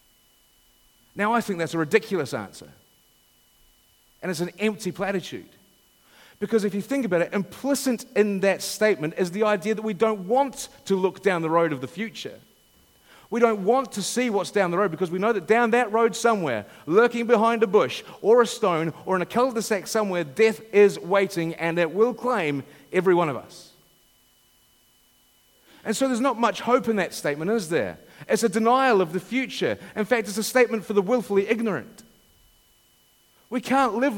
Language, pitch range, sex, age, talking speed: English, 180-225 Hz, male, 40-59, 185 wpm